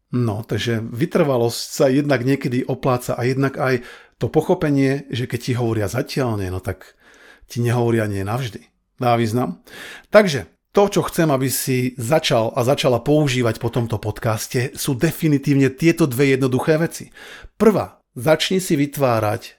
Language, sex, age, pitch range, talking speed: Slovak, male, 40-59, 115-145 Hz, 145 wpm